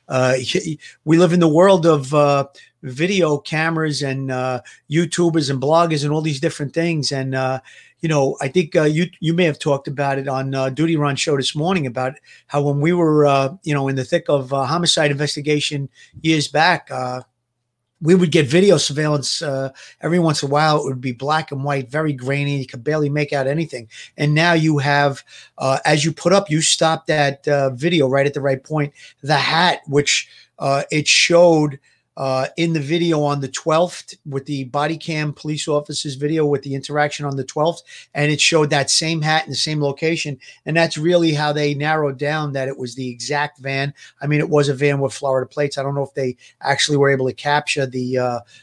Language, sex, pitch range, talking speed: English, male, 135-160 Hz, 215 wpm